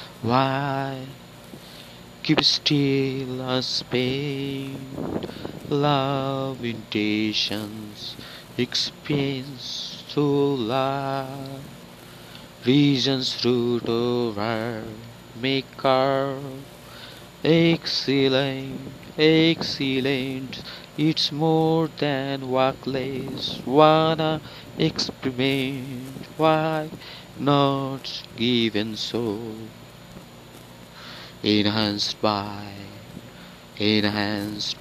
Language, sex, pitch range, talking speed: Bengali, male, 110-135 Hz, 50 wpm